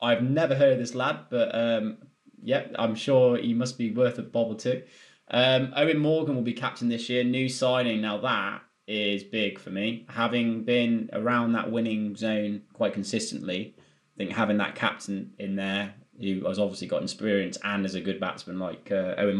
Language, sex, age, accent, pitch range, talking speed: English, male, 20-39, British, 105-130 Hz, 190 wpm